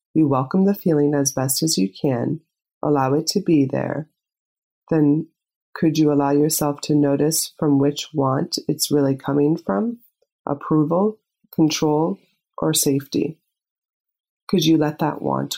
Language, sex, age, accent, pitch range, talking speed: English, female, 30-49, American, 145-165 Hz, 145 wpm